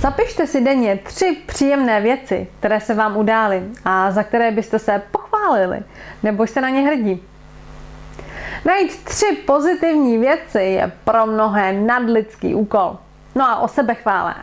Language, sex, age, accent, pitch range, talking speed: Czech, female, 20-39, native, 200-270 Hz, 145 wpm